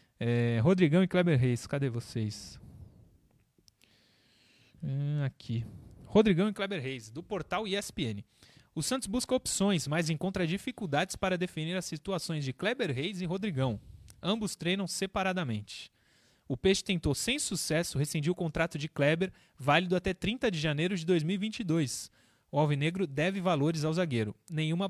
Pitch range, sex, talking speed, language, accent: 135-195 Hz, male, 135 wpm, Portuguese, Brazilian